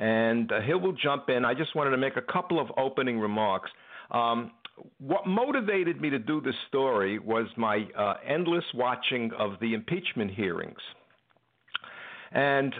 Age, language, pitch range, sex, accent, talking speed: 60-79, English, 115-185 Hz, male, American, 160 wpm